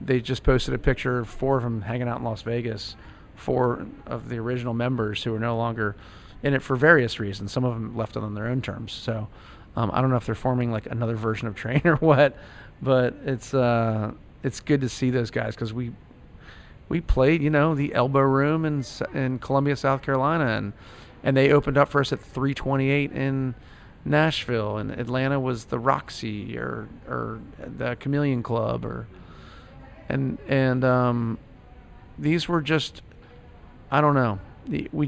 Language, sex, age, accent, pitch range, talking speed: English, male, 40-59, American, 110-135 Hz, 185 wpm